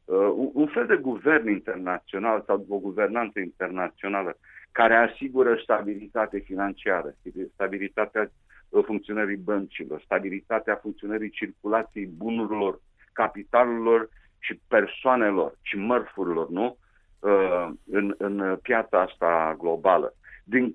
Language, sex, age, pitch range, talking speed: Romanian, male, 50-69, 100-150 Hz, 100 wpm